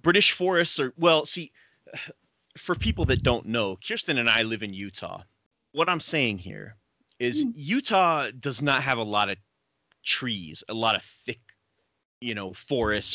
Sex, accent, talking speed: male, American, 165 wpm